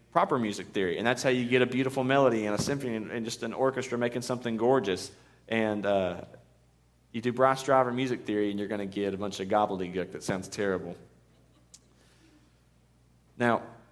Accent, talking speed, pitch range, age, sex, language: American, 180 wpm, 100-140 Hz, 40-59, male, English